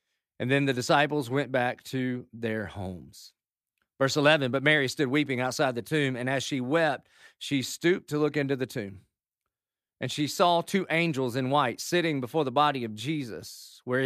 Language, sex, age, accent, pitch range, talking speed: English, male, 40-59, American, 120-145 Hz, 185 wpm